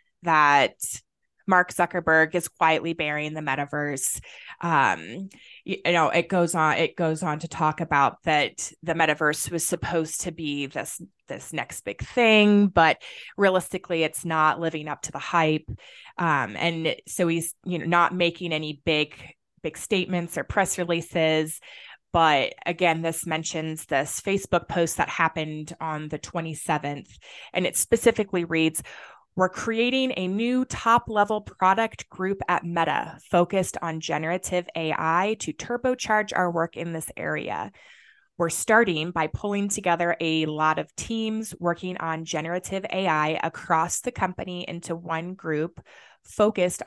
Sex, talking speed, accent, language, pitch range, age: female, 145 wpm, American, English, 160-185 Hz, 20-39